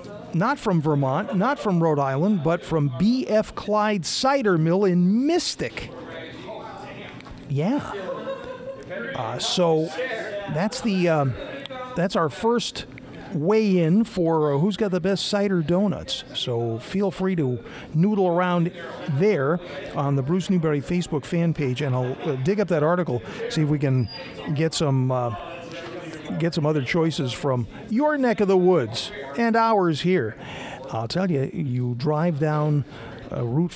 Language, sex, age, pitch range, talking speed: English, male, 50-69, 140-200 Hz, 145 wpm